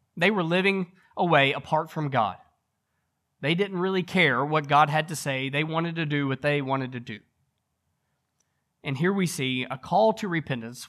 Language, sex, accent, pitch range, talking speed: English, male, American, 135-175 Hz, 180 wpm